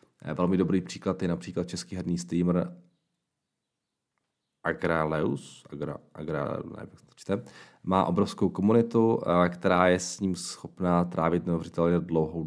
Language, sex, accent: Czech, male, native